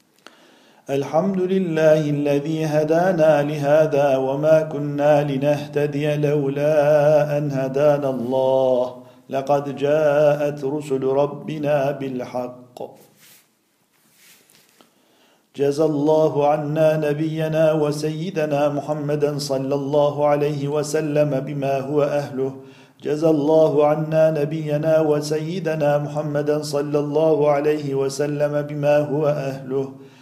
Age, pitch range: 50-69, 140-150 Hz